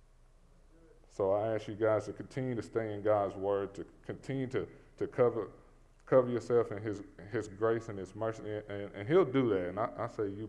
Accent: American